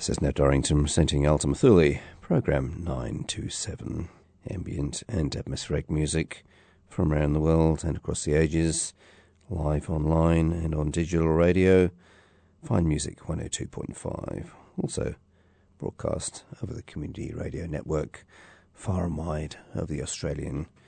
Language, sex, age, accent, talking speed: English, male, 40-59, British, 120 wpm